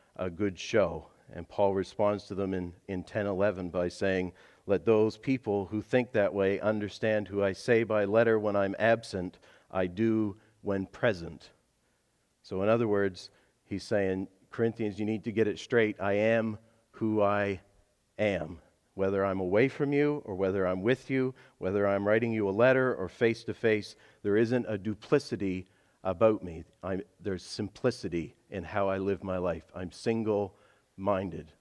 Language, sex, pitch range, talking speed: English, male, 95-115 Hz, 165 wpm